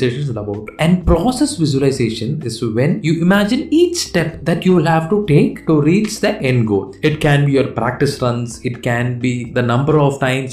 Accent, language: native, Tamil